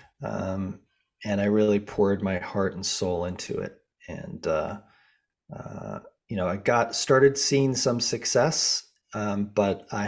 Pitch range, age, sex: 95-115 Hz, 30-49, male